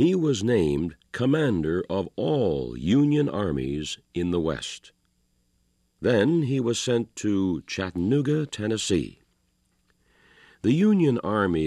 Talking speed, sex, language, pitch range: 110 wpm, male, English, 85-130 Hz